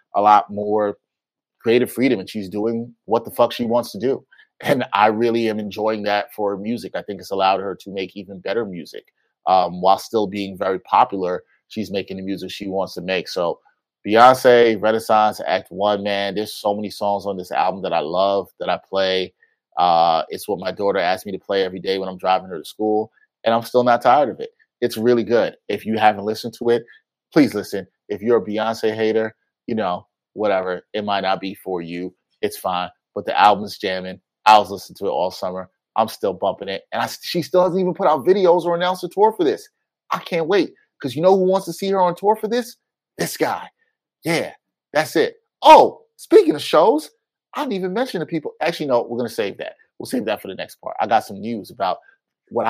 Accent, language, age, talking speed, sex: American, English, 30-49, 225 wpm, male